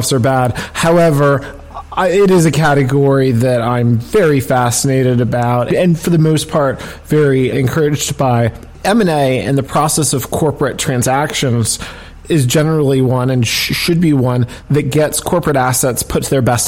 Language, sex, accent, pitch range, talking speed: English, male, American, 125-150 Hz, 155 wpm